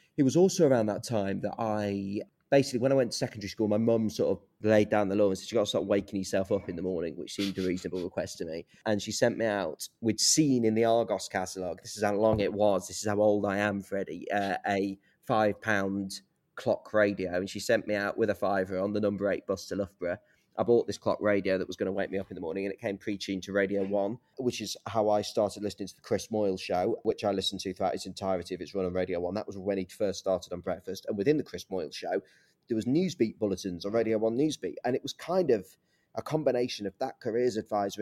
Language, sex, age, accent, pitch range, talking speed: English, male, 20-39, British, 100-120 Hz, 260 wpm